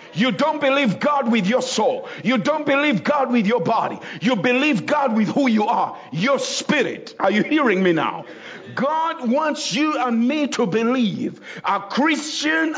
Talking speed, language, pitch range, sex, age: 175 wpm, English, 225-290 Hz, male, 50-69